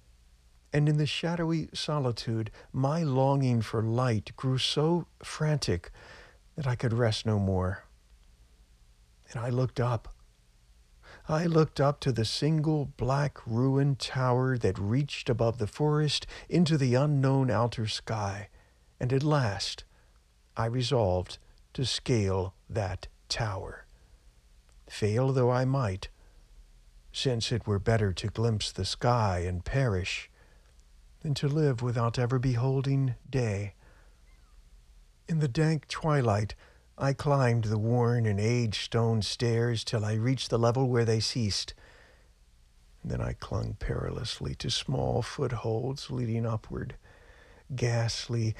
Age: 60-79